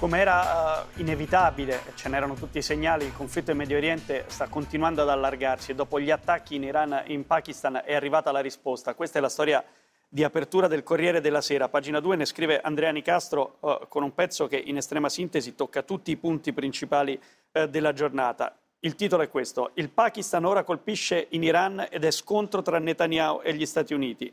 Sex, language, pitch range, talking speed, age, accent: male, Italian, 145-175 Hz, 195 wpm, 40-59, native